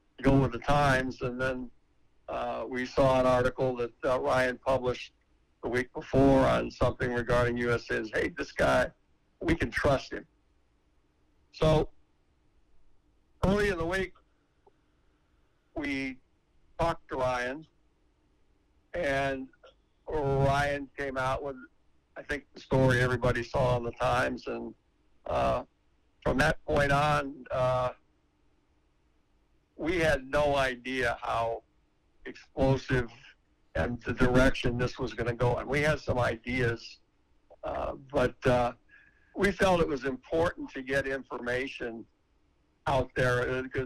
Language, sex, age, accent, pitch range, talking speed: English, male, 60-79, American, 115-140 Hz, 125 wpm